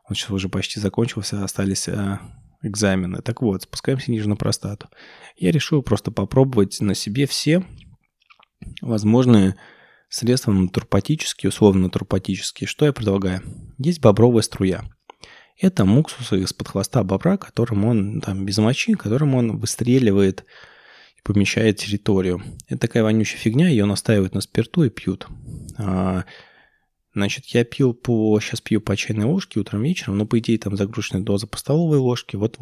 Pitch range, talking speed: 100-120 Hz, 145 wpm